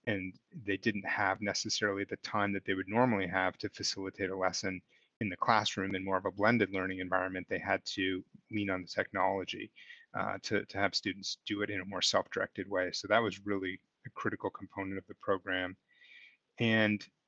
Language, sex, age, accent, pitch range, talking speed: English, male, 30-49, American, 95-105 Hz, 195 wpm